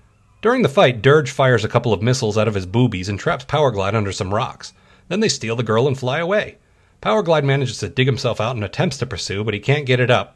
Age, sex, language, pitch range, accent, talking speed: 40-59, male, English, 105-140 Hz, American, 250 wpm